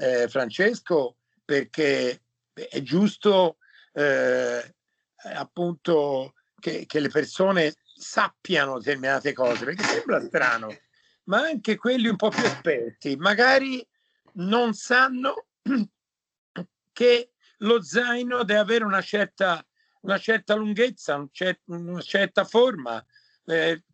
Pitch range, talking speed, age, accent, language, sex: 160-230 Hz, 110 wpm, 50-69, native, Italian, male